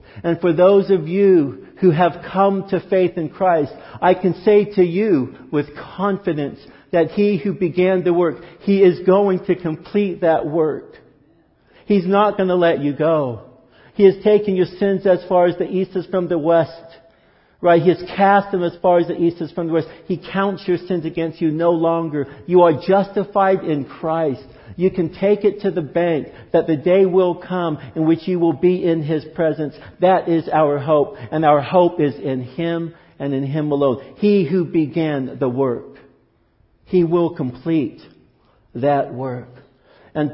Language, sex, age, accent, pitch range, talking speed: English, male, 50-69, American, 140-180 Hz, 185 wpm